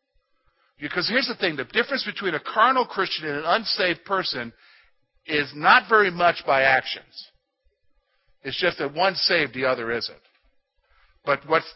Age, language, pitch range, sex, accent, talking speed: 50-69, English, 155-245 Hz, male, American, 155 wpm